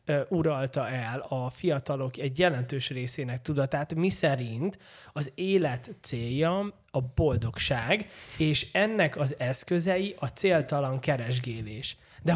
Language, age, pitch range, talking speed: Hungarian, 20-39, 130-175 Hz, 110 wpm